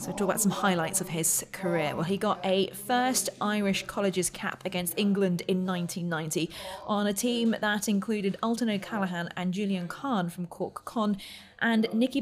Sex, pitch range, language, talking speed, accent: female, 180-230 Hz, English, 170 wpm, British